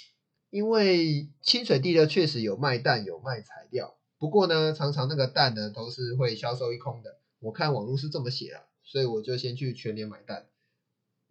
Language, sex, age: Chinese, male, 20-39